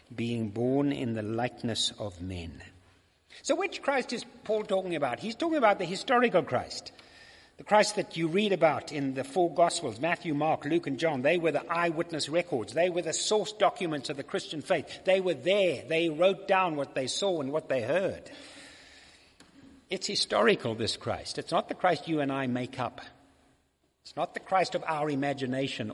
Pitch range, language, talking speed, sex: 145-215 Hz, English, 190 wpm, male